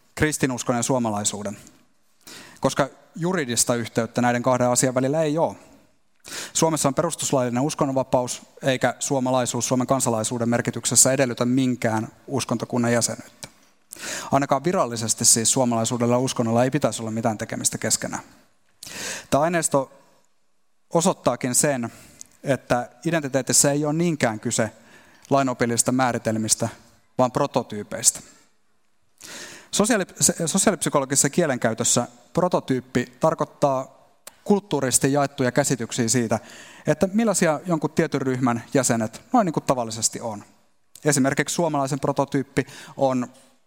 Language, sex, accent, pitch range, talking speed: Finnish, male, native, 120-150 Hz, 105 wpm